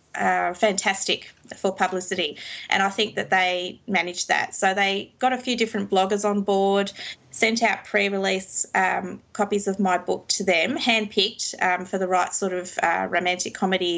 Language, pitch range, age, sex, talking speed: English, 190-215 Hz, 20-39, female, 170 wpm